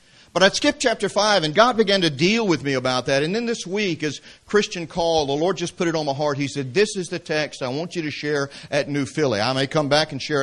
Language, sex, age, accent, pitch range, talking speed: English, male, 50-69, American, 140-180 Hz, 280 wpm